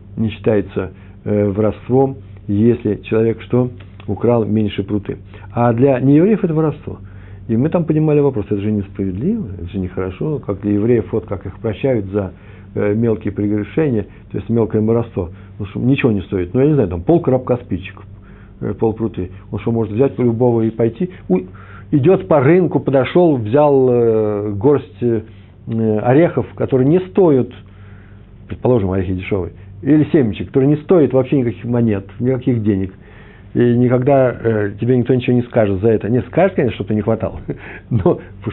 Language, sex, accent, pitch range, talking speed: Russian, male, native, 100-125 Hz, 170 wpm